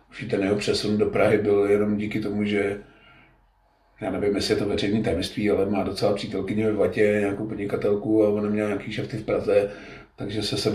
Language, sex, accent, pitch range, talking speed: Czech, male, native, 110-125 Hz, 190 wpm